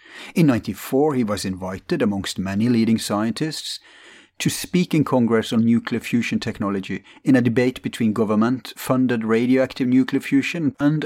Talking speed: 140 wpm